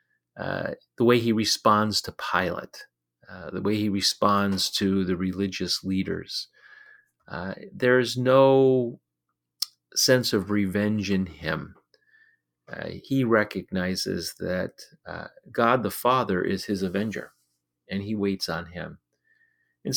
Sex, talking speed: male, 125 wpm